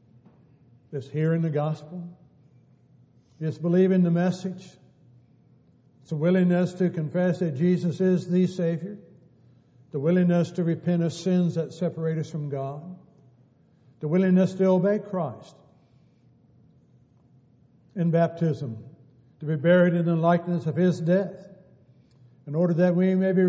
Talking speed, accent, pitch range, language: 130 wpm, American, 135-175 Hz, English